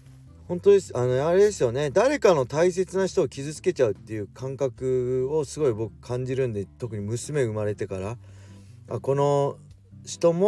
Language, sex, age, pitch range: Japanese, male, 40-59, 105-150 Hz